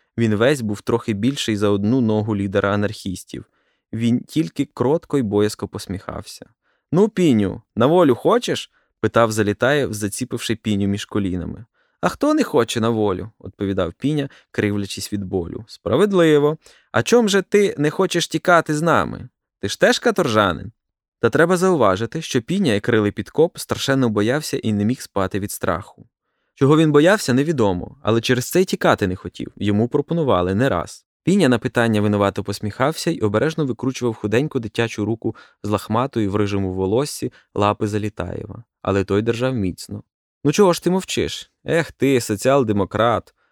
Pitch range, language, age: 105-145 Hz, Ukrainian, 20-39